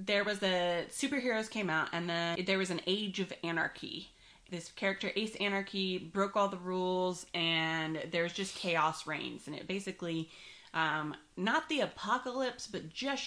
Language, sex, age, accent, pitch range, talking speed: English, female, 30-49, American, 170-205 Hz, 165 wpm